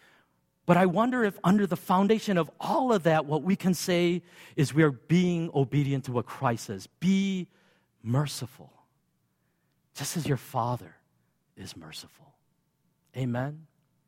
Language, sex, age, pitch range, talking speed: English, male, 40-59, 120-155 Hz, 140 wpm